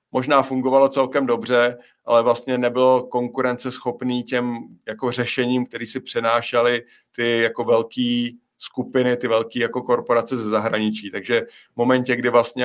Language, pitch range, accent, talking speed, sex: Czech, 115-125 Hz, native, 140 wpm, male